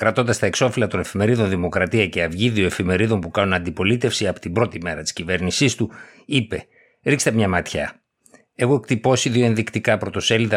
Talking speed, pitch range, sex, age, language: 160 wpm, 95-120 Hz, male, 60-79, Greek